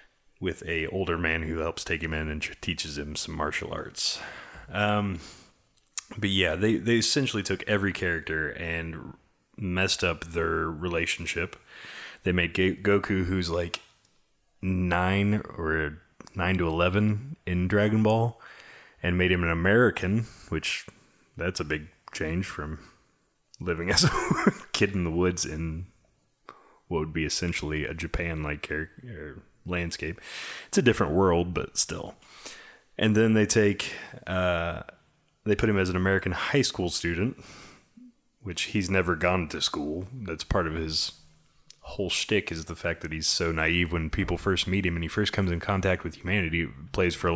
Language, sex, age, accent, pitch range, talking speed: English, male, 20-39, American, 85-100 Hz, 160 wpm